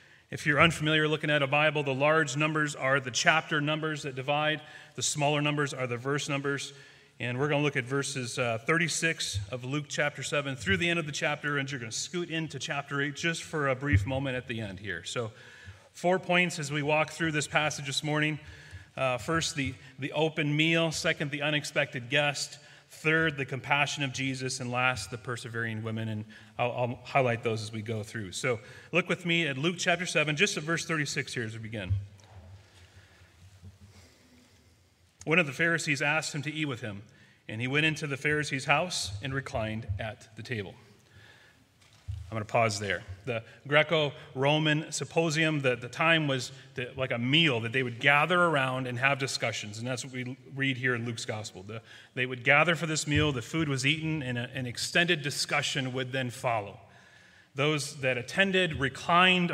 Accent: American